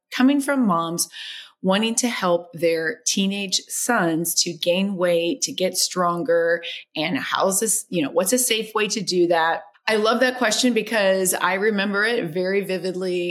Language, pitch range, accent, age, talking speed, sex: English, 170-205 Hz, American, 30-49, 165 wpm, female